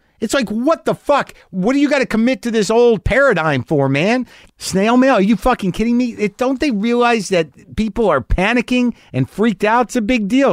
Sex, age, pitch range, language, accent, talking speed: male, 50-69, 115-180 Hz, English, American, 220 wpm